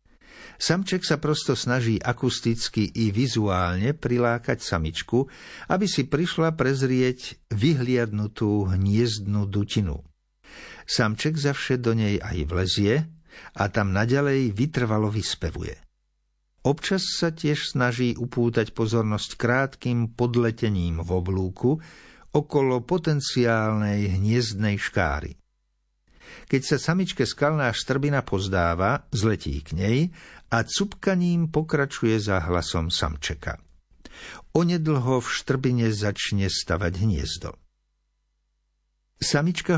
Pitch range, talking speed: 95-135 Hz, 95 wpm